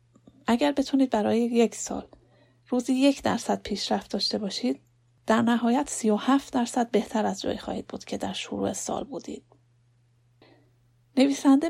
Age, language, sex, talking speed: 30-49, Persian, female, 145 wpm